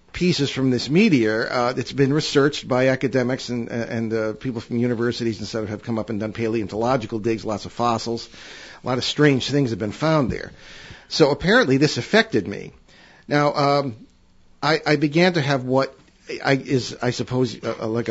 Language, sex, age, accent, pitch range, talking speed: English, male, 50-69, American, 115-140 Hz, 185 wpm